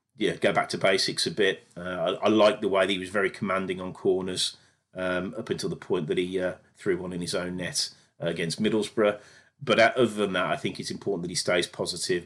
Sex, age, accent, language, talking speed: male, 30-49, British, English, 240 wpm